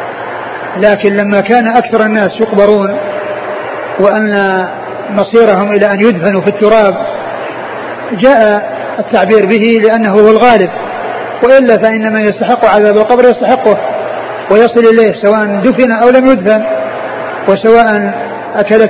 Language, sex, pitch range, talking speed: Arabic, male, 200-220 Hz, 110 wpm